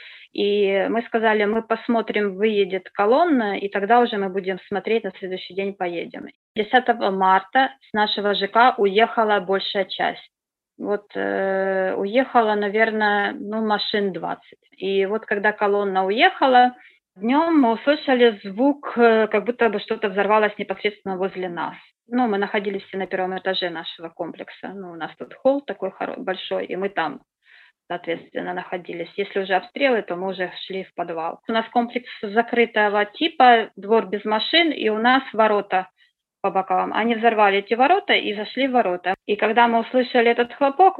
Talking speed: 155 wpm